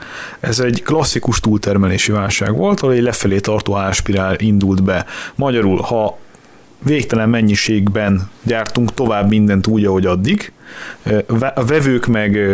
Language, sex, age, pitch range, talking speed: Hungarian, male, 30-49, 100-120 Hz, 125 wpm